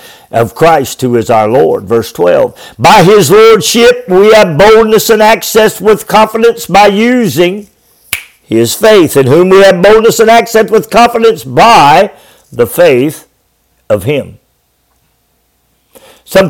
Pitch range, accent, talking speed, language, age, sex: 170-235 Hz, American, 135 wpm, English, 60-79, male